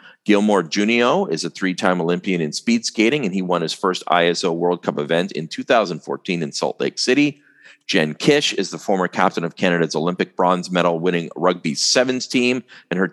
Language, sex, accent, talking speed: English, male, American, 185 wpm